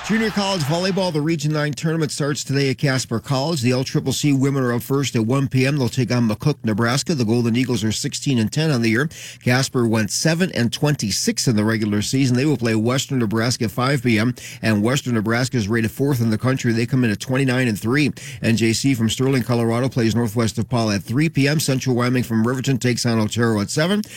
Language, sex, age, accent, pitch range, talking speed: English, male, 40-59, American, 115-140 Hz, 225 wpm